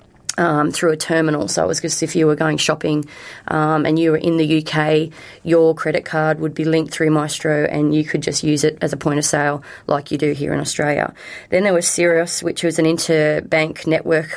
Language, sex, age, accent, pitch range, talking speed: English, female, 20-39, Australian, 150-165 Hz, 225 wpm